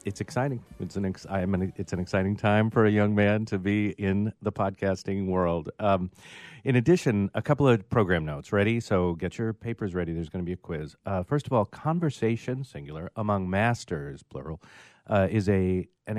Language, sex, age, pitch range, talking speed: English, male, 40-59, 90-115 Hz, 200 wpm